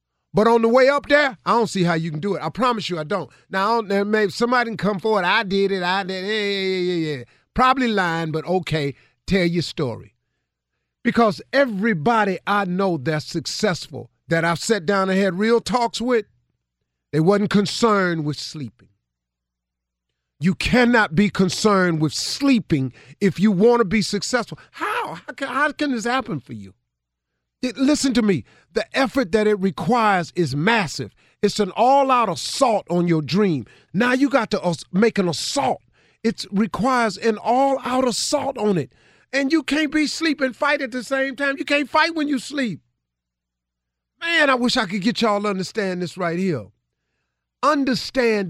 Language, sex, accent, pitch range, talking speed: English, male, American, 160-245 Hz, 180 wpm